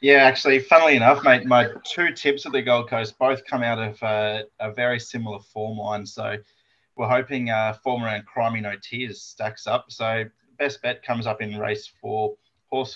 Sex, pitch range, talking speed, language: male, 105-120 Hz, 200 wpm, English